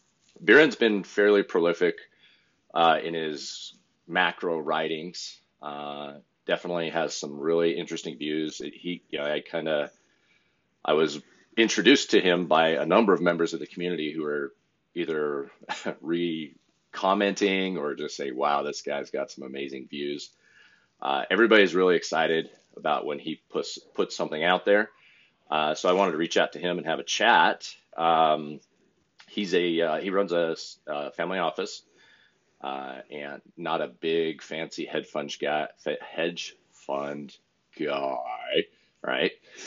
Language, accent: English, American